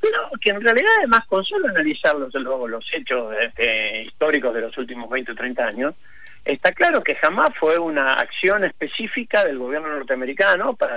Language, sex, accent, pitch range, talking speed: Spanish, male, Argentinian, 145-240 Hz, 180 wpm